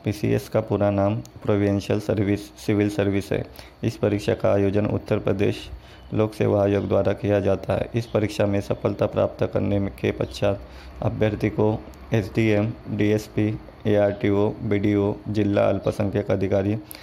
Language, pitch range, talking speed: Hindi, 100-110 Hz, 140 wpm